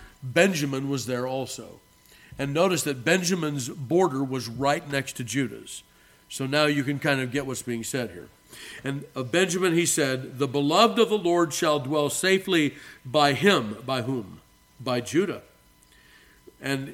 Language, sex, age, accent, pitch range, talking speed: English, male, 50-69, American, 125-160 Hz, 160 wpm